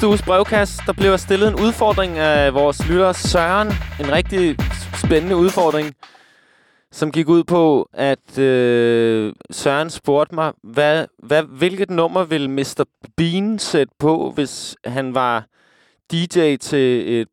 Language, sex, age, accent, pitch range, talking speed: Danish, male, 20-39, native, 120-155 Hz, 135 wpm